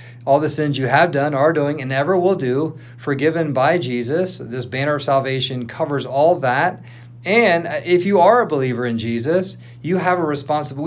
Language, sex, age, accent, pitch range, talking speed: English, male, 40-59, American, 115-140 Hz, 190 wpm